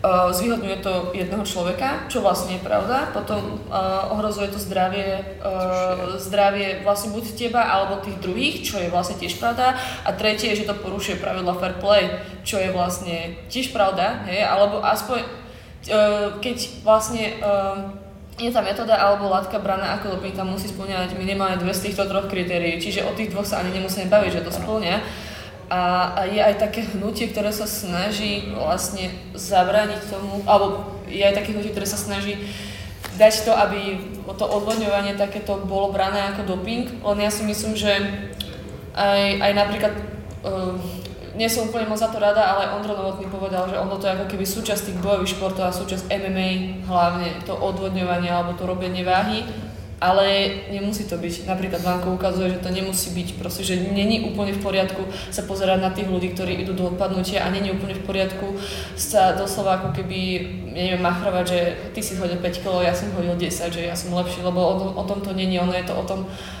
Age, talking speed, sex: 20-39, 185 wpm, female